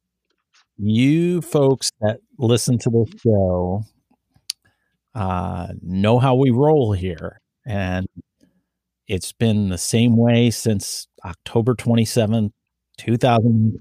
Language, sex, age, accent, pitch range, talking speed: English, male, 40-59, American, 95-125 Hz, 95 wpm